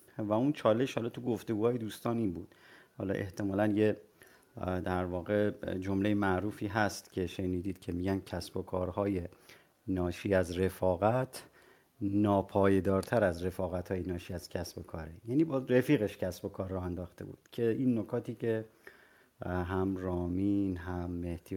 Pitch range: 95-110 Hz